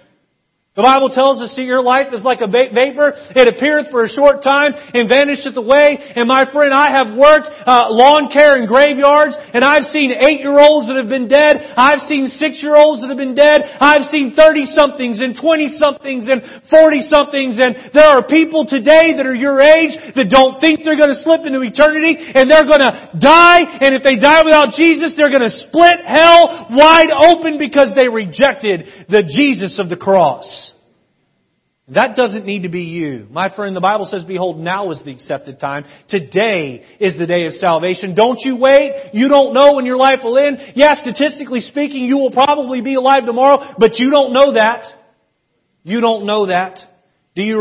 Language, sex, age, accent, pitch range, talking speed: English, male, 40-59, American, 210-290 Hz, 190 wpm